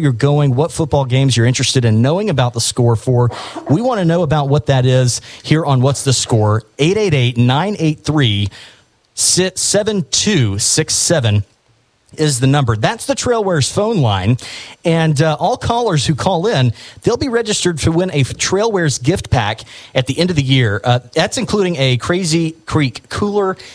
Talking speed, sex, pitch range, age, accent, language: 165 wpm, male, 120-155 Hz, 40-59, American, English